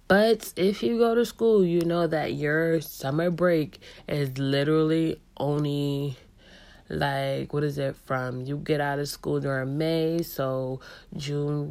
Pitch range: 140-170 Hz